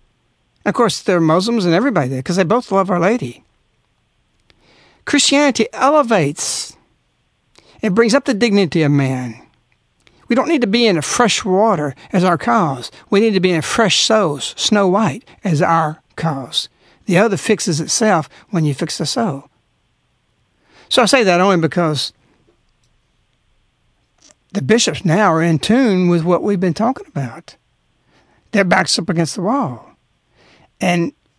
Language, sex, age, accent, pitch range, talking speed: English, male, 60-79, American, 155-210 Hz, 155 wpm